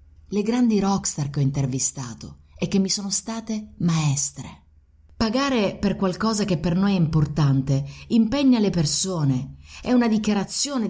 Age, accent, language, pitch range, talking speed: 30-49, Italian, English, 140-205 Hz, 145 wpm